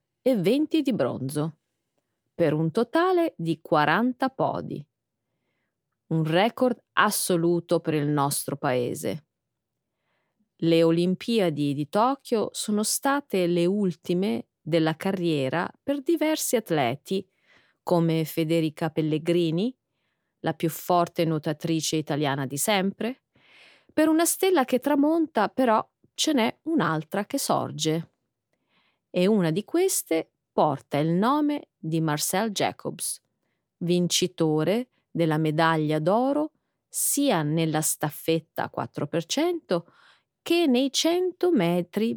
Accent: native